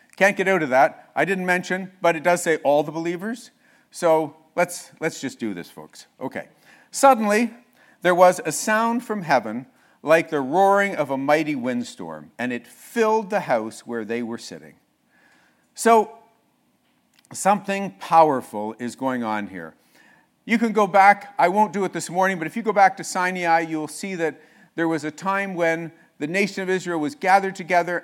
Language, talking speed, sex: English, 180 wpm, male